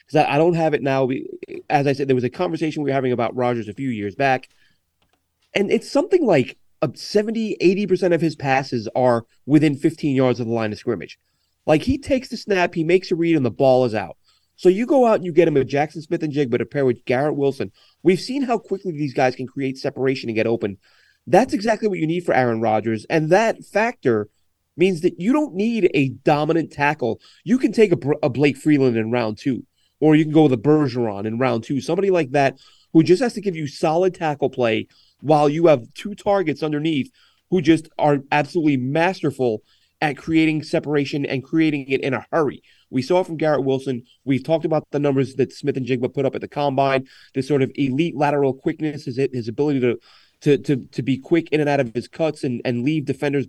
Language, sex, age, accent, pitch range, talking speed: English, male, 30-49, American, 130-170 Hz, 220 wpm